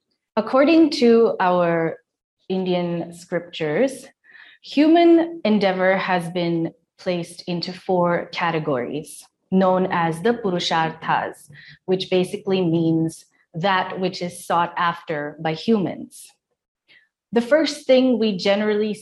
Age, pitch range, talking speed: 20-39, 175-220 Hz, 100 wpm